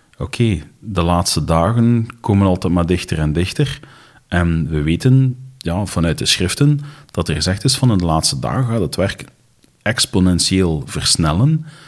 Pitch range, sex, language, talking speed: 90-130 Hz, male, Dutch, 155 wpm